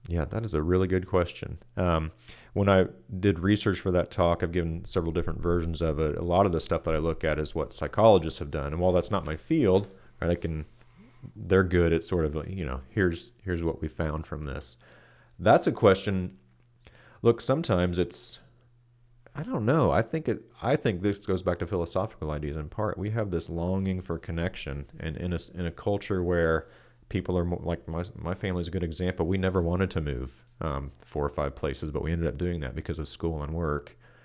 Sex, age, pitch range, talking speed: male, 30-49, 80-95 Hz, 215 wpm